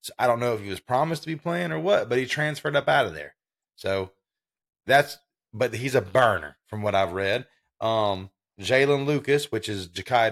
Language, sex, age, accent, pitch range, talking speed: English, male, 30-49, American, 95-120 Hz, 210 wpm